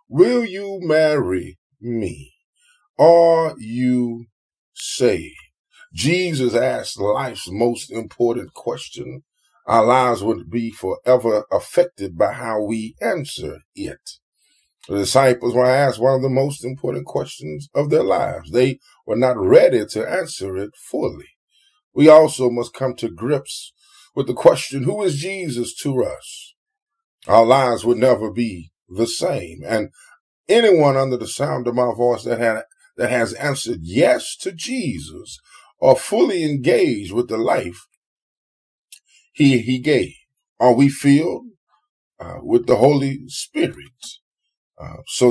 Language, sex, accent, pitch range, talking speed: English, male, American, 120-175 Hz, 135 wpm